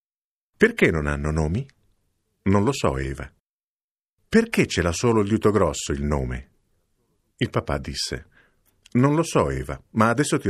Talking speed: 150 wpm